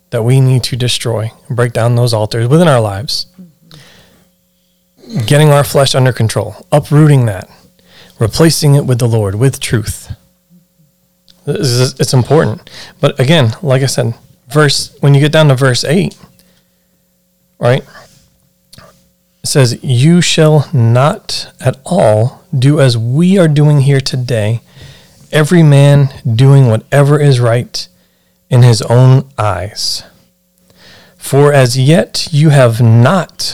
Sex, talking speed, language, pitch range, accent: male, 130 wpm, English, 120-150 Hz, American